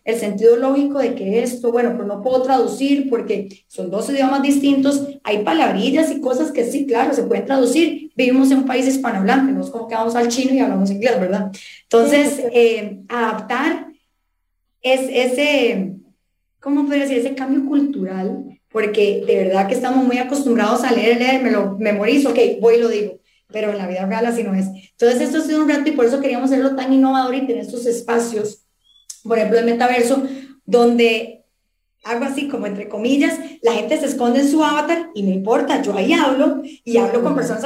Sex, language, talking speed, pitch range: female, English, 195 wpm, 225-275 Hz